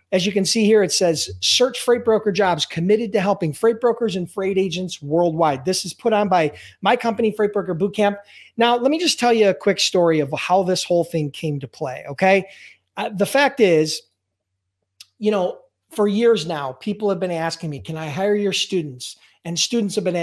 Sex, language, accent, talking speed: male, English, American, 210 wpm